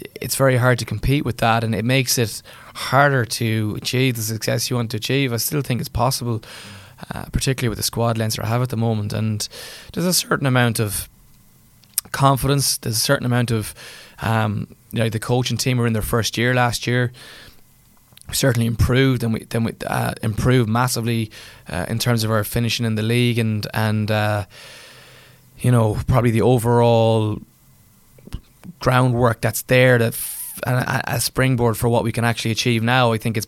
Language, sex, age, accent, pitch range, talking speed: English, male, 20-39, Irish, 110-130 Hz, 190 wpm